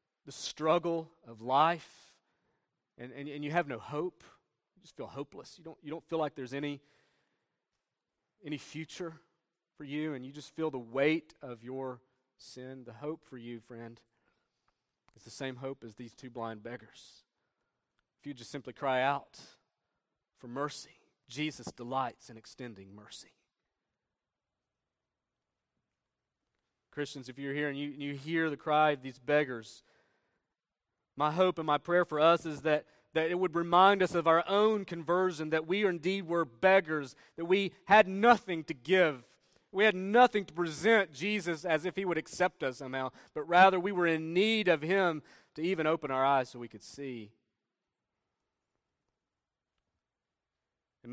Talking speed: 160 wpm